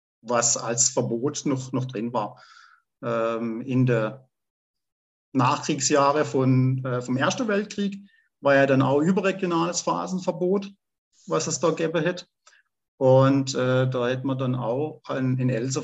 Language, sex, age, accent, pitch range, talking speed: German, male, 50-69, German, 130-155 Hz, 135 wpm